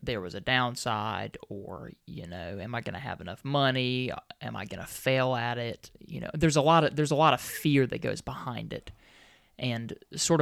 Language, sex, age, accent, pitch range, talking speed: English, male, 20-39, American, 125-150 Hz, 220 wpm